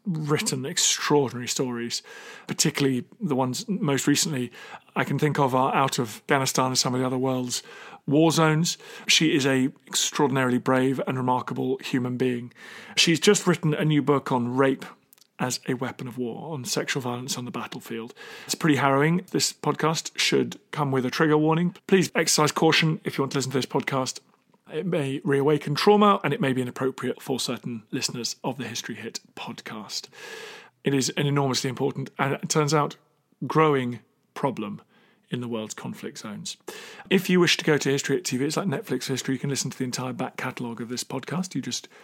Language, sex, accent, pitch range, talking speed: English, male, British, 130-155 Hz, 190 wpm